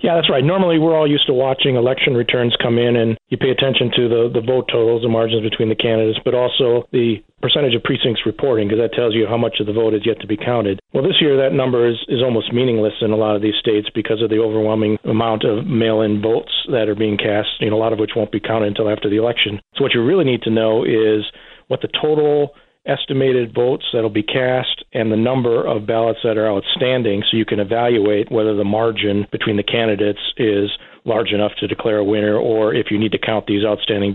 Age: 40-59